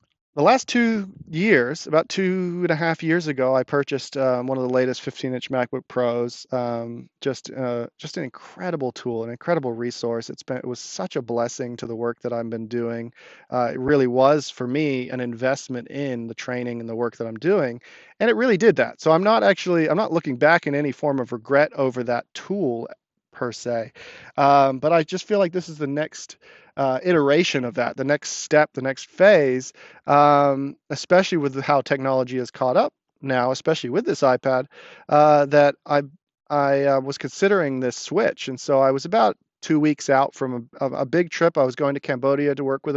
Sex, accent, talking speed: male, American, 205 wpm